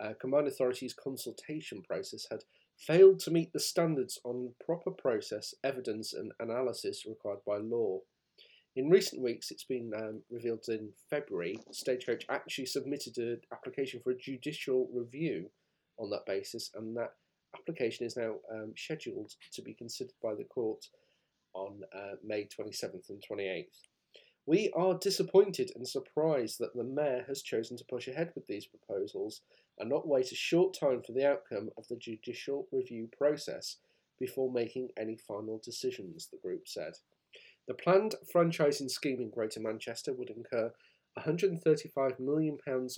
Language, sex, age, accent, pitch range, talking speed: English, male, 30-49, British, 120-180 Hz, 150 wpm